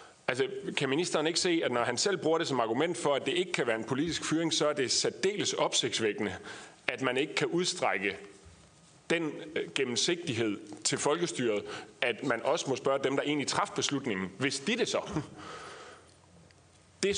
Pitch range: 120-175 Hz